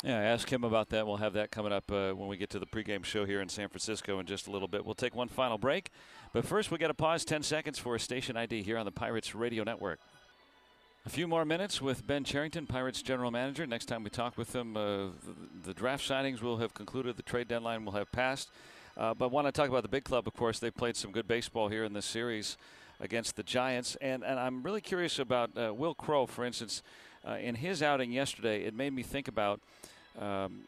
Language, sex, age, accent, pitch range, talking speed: English, male, 50-69, American, 110-130 Hz, 245 wpm